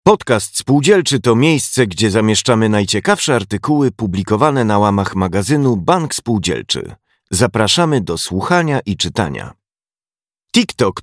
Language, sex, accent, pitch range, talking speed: Polish, male, native, 100-140 Hz, 110 wpm